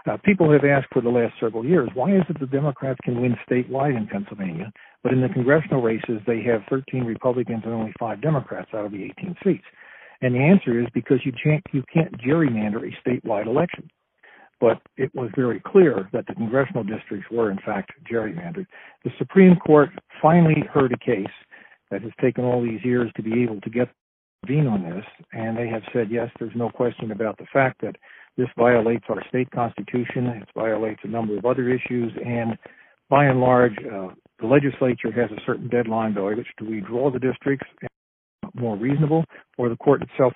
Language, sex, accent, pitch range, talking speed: English, male, American, 115-140 Hz, 195 wpm